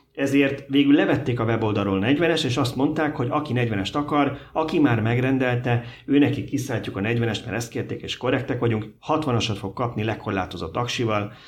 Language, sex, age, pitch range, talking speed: Hungarian, male, 30-49, 100-130 Hz, 160 wpm